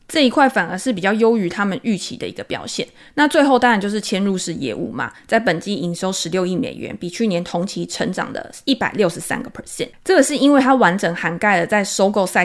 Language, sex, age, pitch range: Chinese, female, 20-39, 190-245 Hz